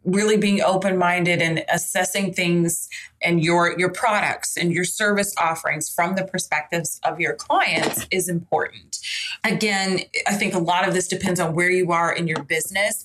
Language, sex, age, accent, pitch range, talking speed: English, female, 20-39, American, 170-205 Hz, 170 wpm